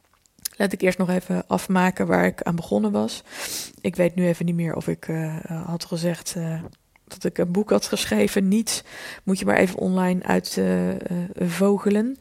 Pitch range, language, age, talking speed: 170-200 Hz, Dutch, 20-39, 175 wpm